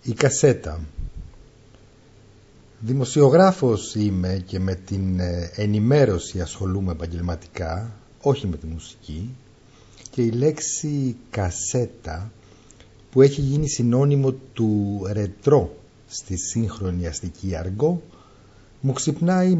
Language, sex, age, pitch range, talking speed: Greek, male, 50-69, 95-130 Hz, 90 wpm